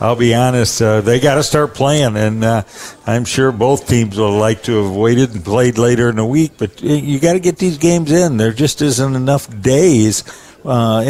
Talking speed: 215 wpm